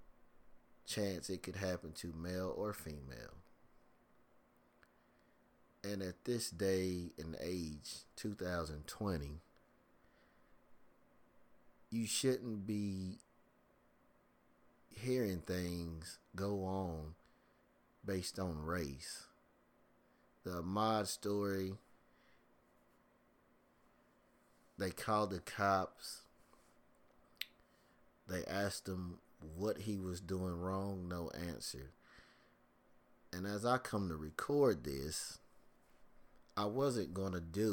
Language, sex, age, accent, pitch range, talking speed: English, male, 30-49, American, 85-100 Hz, 85 wpm